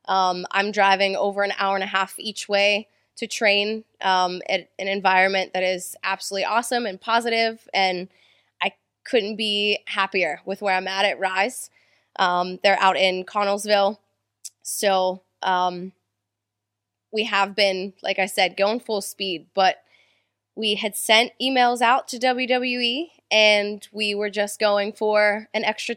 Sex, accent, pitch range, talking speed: female, American, 195-245 Hz, 150 wpm